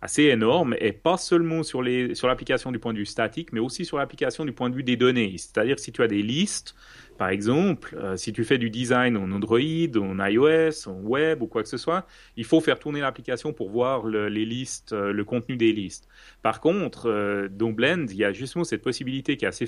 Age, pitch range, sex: 30-49, 105-140 Hz, male